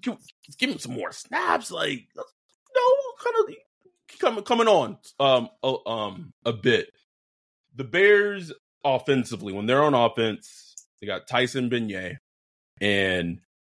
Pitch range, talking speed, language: 105-145 Hz, 125 wpm, English